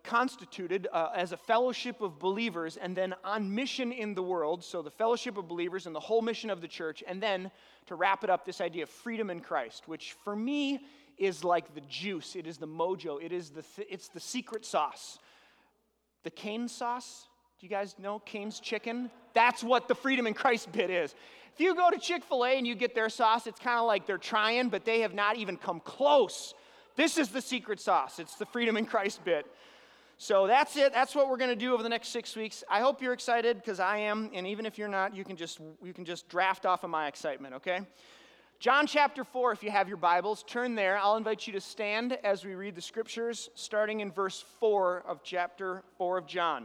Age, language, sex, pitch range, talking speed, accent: 30-49, English, male, 185-240 Hz, 225 wpm, American